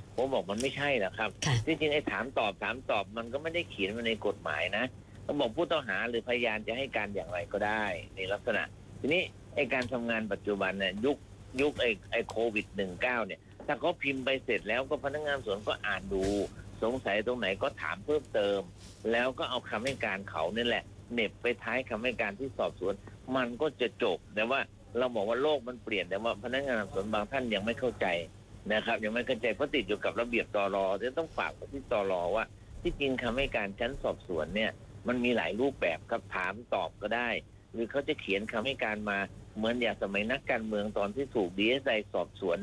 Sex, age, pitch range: male, 60-79, 100-130 Hz